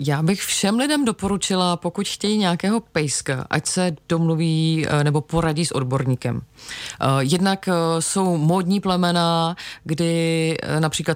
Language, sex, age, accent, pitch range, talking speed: Czech, female, 30-49, native, 145-165 Hz, 120 wpm